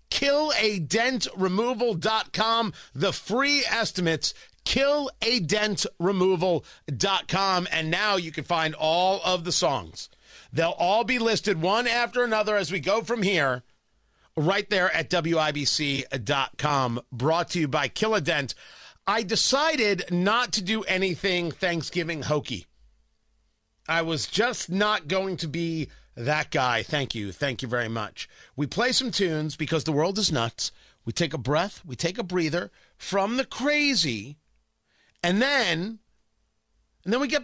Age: 40-59